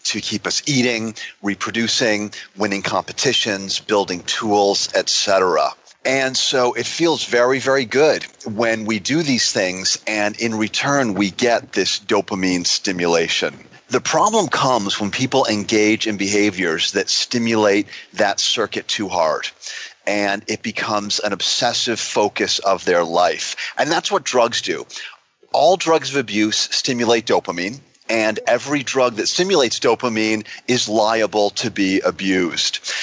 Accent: American